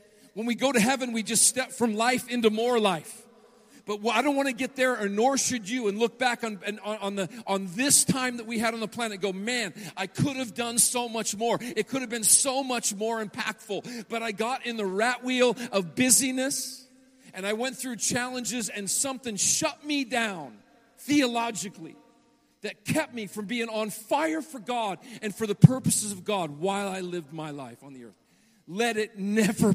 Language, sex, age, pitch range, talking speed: English, male, 40-59, 195-235 Hz, 210 wpm